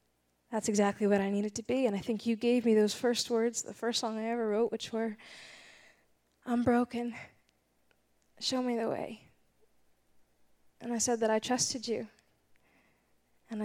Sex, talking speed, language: female, 165 wpm, English